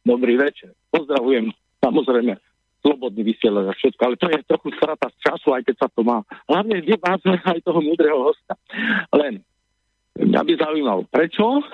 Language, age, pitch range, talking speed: Czech, 50-69, 120-190 Hz, 165 wpm